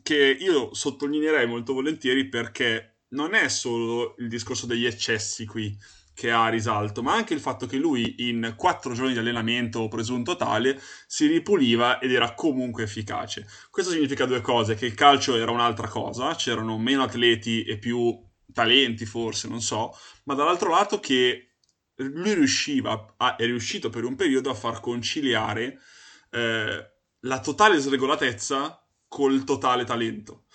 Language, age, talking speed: Italian, 20-39, 150 wpm